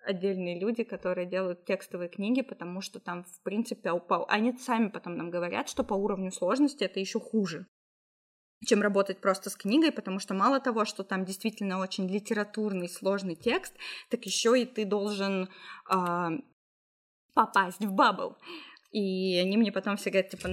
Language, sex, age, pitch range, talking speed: Russian, female, 20-39, 185-230 Hz, 165 wpm